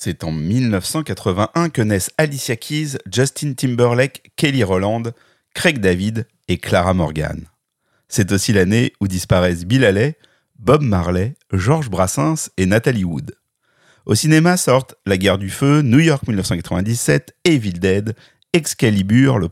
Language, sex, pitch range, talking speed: French, male, 100-135 Hz, 140 wpm